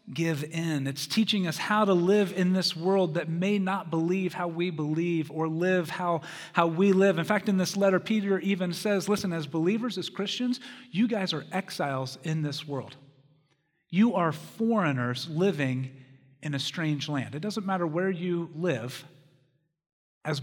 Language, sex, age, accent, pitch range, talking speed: English, male, 40-59, American, 155-215 Hz, 175 wpm